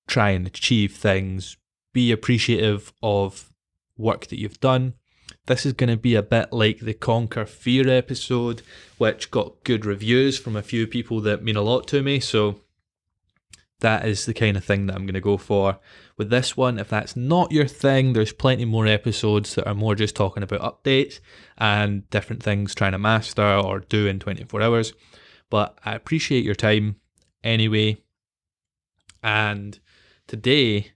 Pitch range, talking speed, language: 100-120 Hz, 170 wpm, English